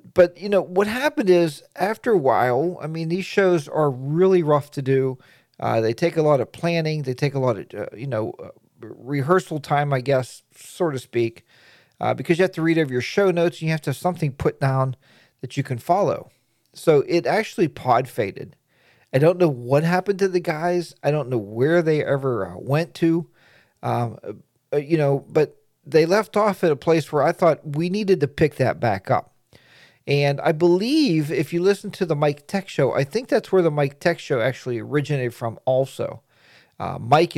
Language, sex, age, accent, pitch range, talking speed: English, male, 40-59, American, 130-180 Hz, 210 wpm